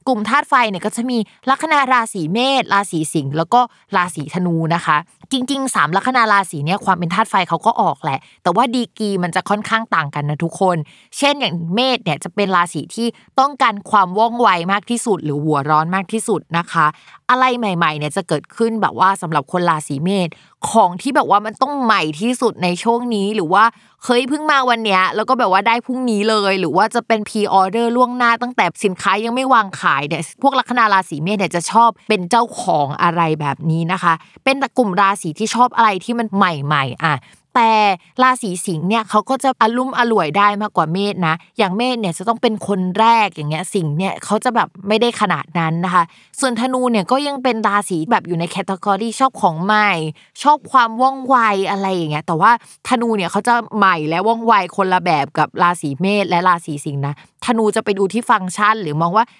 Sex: female